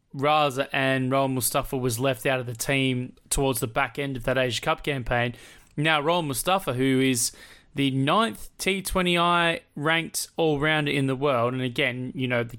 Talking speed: 175 wpm